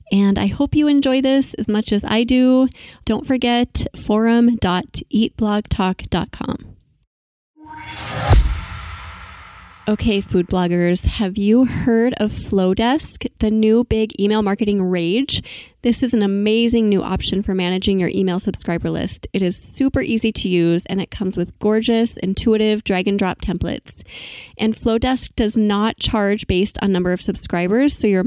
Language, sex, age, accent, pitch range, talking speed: English, female, 20-39, American, 190-240 Hz, 145 wpm